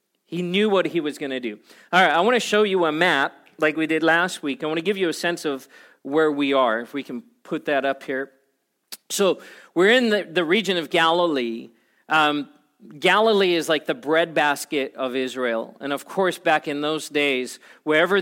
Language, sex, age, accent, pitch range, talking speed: English, male, 40-59, American, 135-170 Hz, 210 wpm